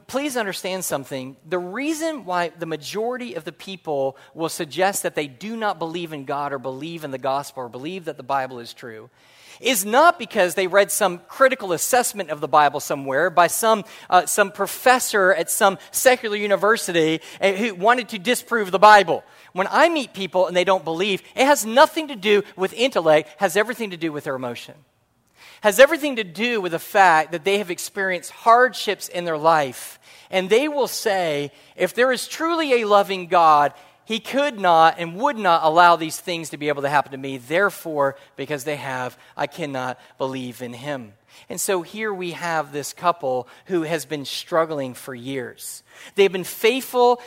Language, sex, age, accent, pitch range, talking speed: English, male, 40-59, American, 155-215 Hz, 190 wpm